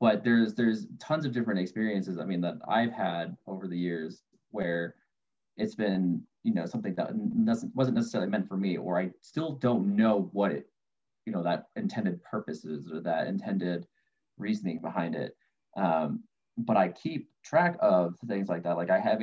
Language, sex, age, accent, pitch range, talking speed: English, male, 20-39, American, 90-110 Hz, 180 wpm